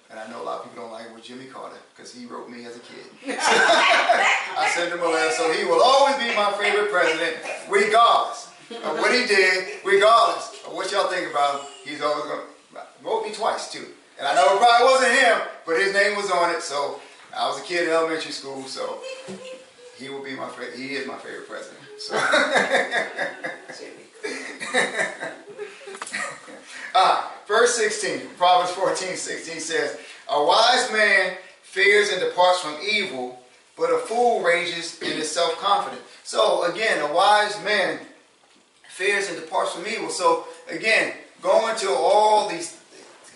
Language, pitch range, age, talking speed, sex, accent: English, 155-230 Hz, 30-49, 175 wpm, male, American